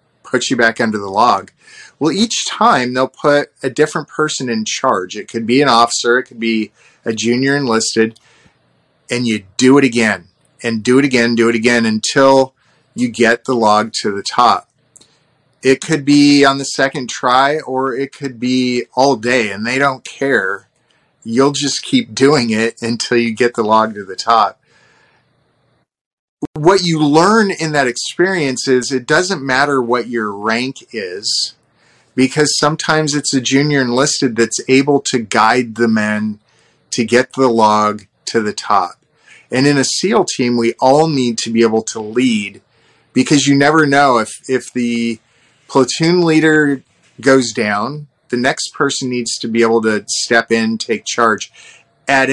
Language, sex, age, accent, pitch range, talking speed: English, male, 30-49, American, 115-140 Hz, 170 wpm